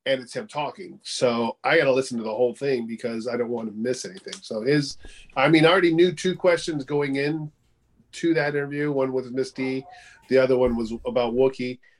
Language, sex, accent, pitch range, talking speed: English, male, American, 115-140 Hz, 220 wpm